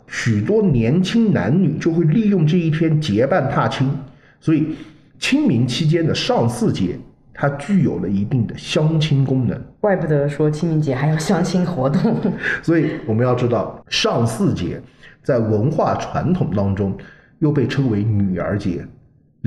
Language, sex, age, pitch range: Chinese, male, 50-69, 115-160 Hz